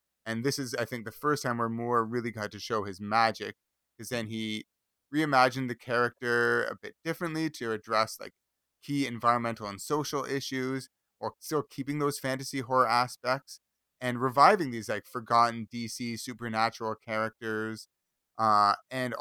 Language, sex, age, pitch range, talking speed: English, male, 30-49, 105-125 Hz, 155 wpm